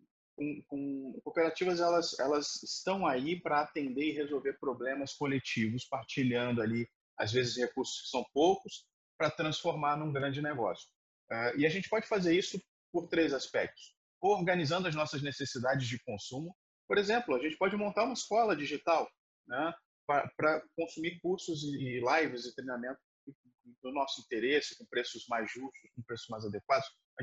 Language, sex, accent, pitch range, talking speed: Portuguese, male, Brazilian, 130-170 Hz, 155 wpm